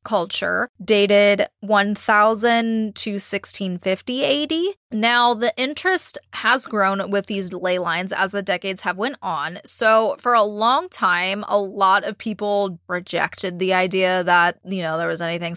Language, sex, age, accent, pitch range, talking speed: English, female, 20-39, American, 195-245 Hz, 150 wpm